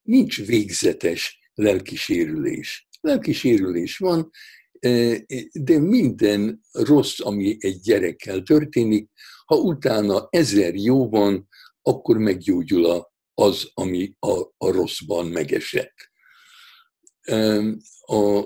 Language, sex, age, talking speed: Hungarian, male, 60-79, 85 wpm